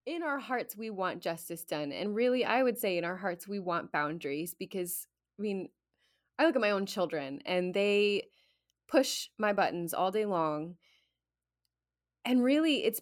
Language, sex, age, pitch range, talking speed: English, female, 20-39, 170-210 Hz, 175 wpm